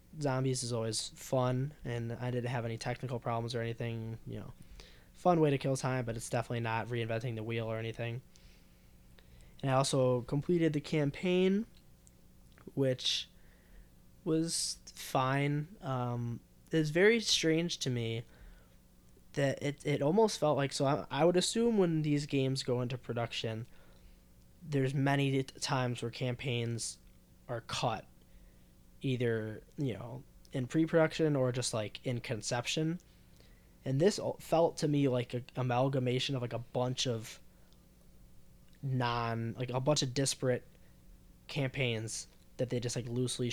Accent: American